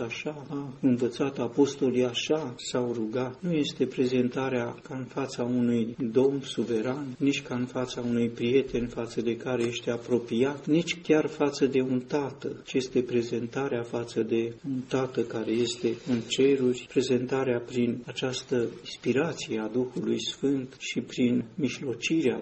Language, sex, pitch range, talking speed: Romanian, male, 120-135 Hz, 145 wpm